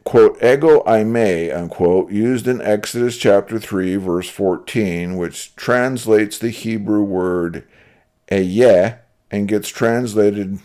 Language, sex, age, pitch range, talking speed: English, male, 50-69, 90-120 Hz, 120 wpm